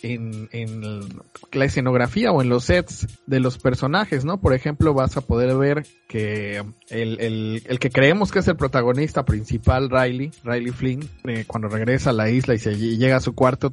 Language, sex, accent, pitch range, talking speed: Spanish, male, Mexican, 120-145 Hz, 195 wpm